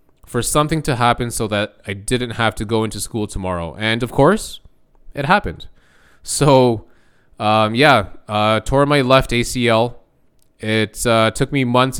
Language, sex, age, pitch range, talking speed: English, male, 20-39, 100-120 Hz, 160 wpm